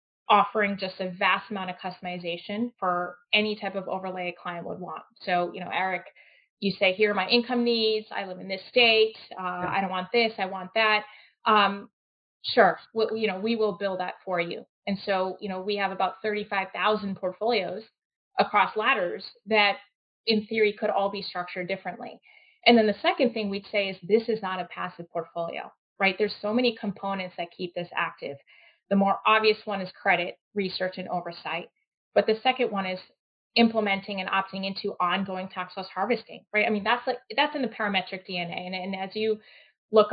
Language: English